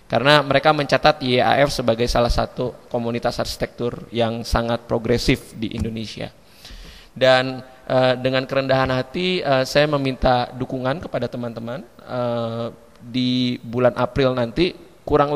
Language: Indonesian